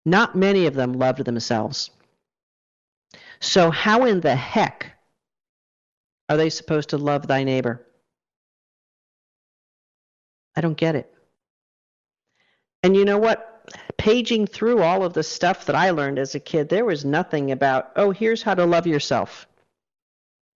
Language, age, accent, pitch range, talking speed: English, 40-59, American, 125-155 Hz, 140 wpm